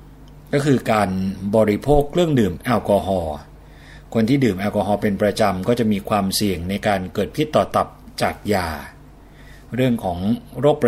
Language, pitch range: Thai, 100-125 Hz